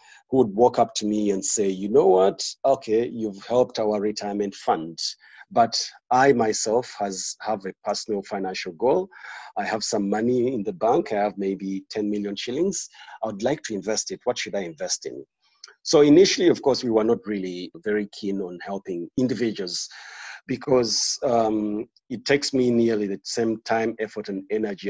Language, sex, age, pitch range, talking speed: English, male, 40-59, 100-125 Hz, 180 wpm